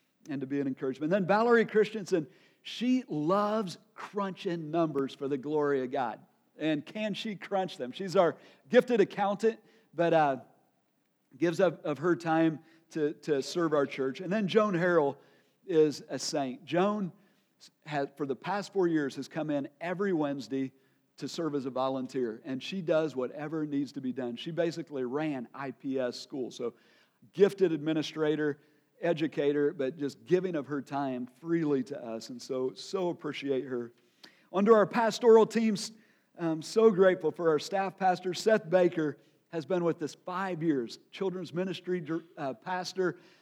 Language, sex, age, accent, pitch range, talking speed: English, male, 50-69, American, 140-185 Hz, 160 wpm